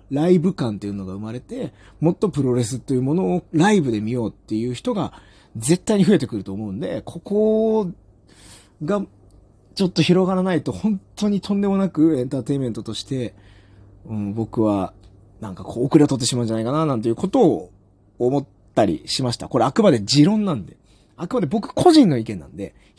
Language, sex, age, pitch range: Japanese, male, 30-49, 100-165 Hz